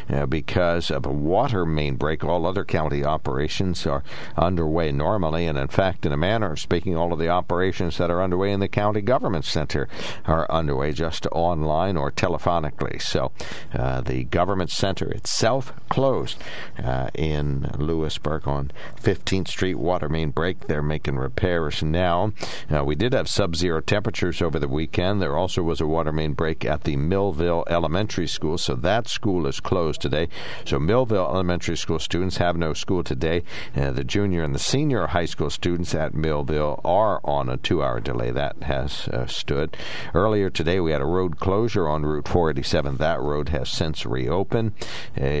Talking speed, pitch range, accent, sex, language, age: 175 wpm, 75-90 Hz, American, male, English, 60-79